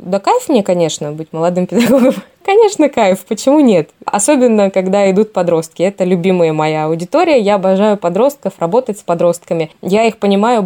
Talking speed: 160 wpm